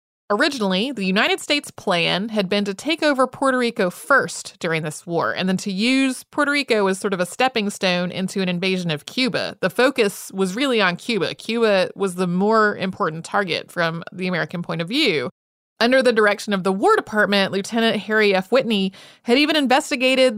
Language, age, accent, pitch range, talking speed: English, 30-49, American, 185-240 Hz, 190 wpm